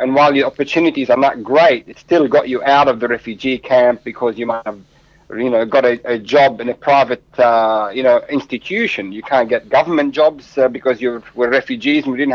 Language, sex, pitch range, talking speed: English, male, 125-160 Hz, 225 wpm